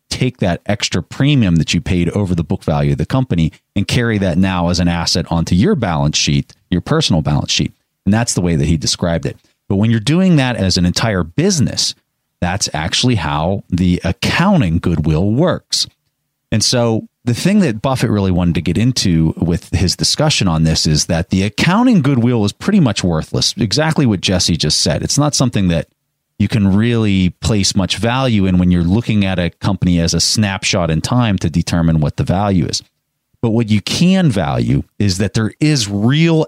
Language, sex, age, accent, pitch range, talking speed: English, male, 30-49, American, 85-120 Hz, 200 wpm